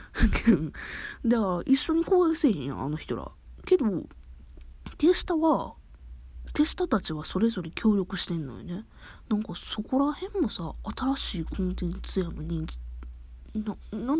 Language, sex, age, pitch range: Japanese, female, 20-39, 145-225 Hz